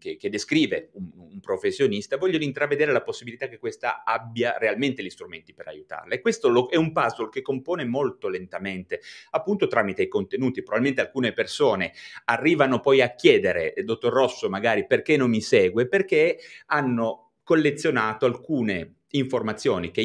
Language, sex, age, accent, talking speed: Italian, male, 30-49, native, 155 wpm